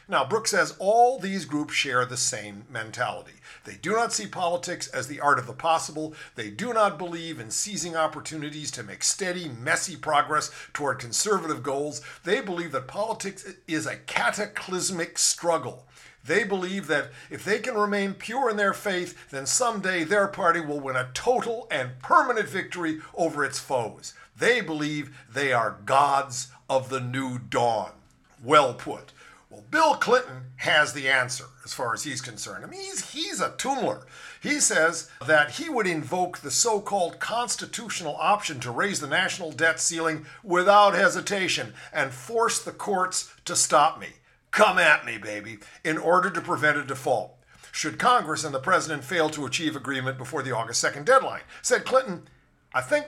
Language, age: English, 50-69